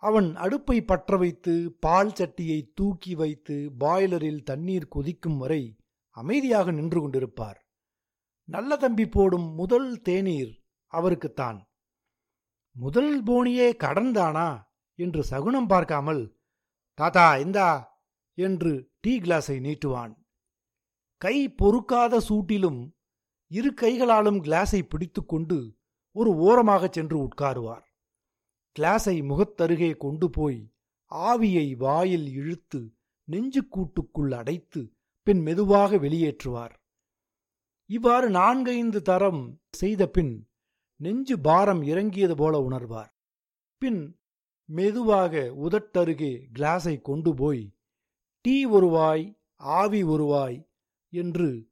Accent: native